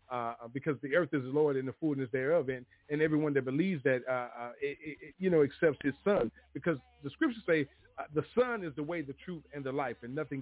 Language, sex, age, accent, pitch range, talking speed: English, male, 40-59, American, 110-145 Hz, 250 wpm